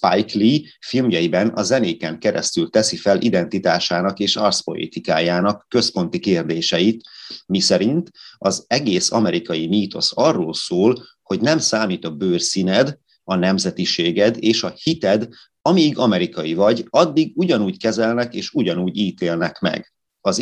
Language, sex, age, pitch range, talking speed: Hungarian, male, 30-49, 85-110 Hz, 120 wpm